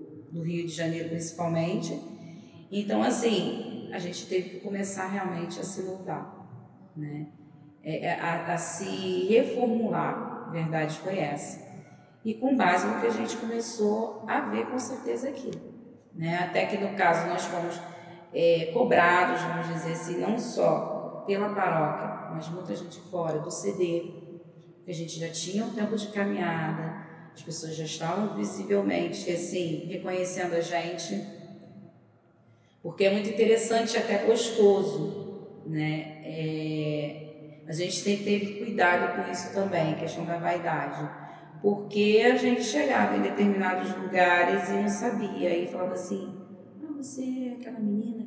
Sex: female